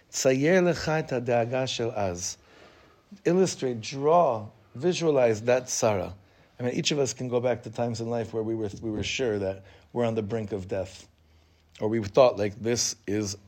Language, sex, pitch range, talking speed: English, male, 105-145 Hz, 160 wpm